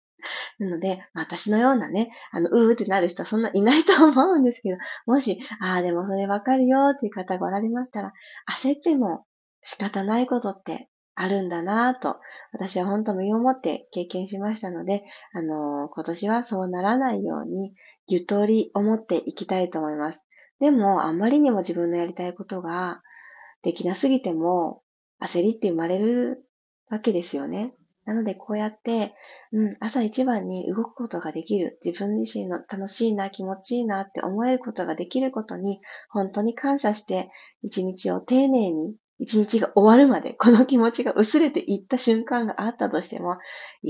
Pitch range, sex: 185-240 Hz, female